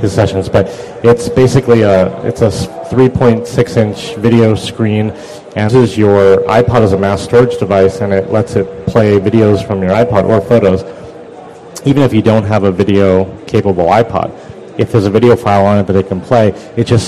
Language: English